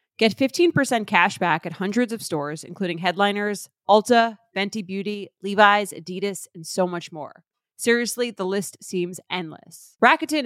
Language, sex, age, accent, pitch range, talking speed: English, female, 30-49, American, 175-215 Hz, 145 wpm